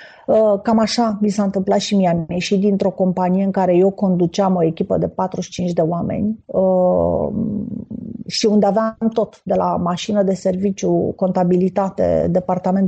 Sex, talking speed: female, 145 wpm